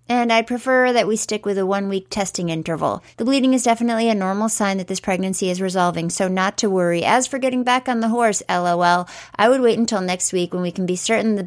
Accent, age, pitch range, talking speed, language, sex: American, 30-49, 180-240 Hz, 245 wpm, English, female